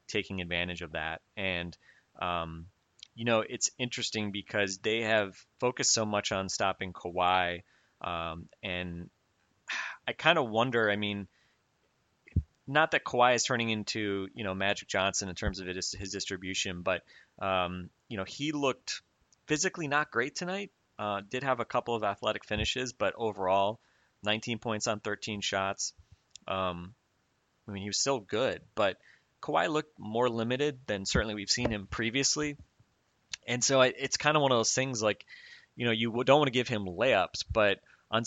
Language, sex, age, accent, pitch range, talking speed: English, male, 30-49, American, 95-125 Hz, 170 wpm